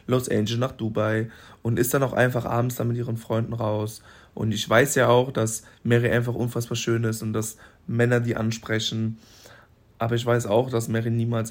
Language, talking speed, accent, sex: German, 200 wpm, German, male